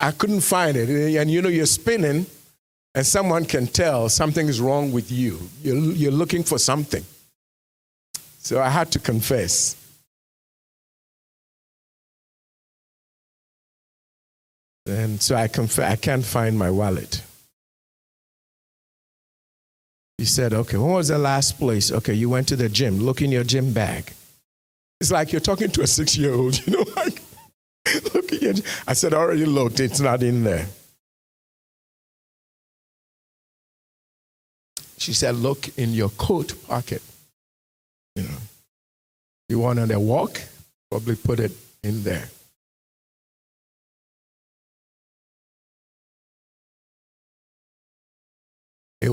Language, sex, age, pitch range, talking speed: English, male, 50-69, 110-145 Hz, 120 wpm